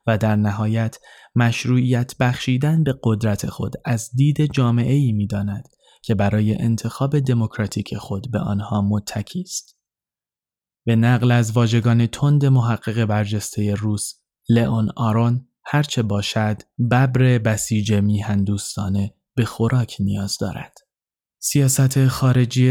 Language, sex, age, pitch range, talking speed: Persian, male, 20-39, 105-125 Hz, 115 wpm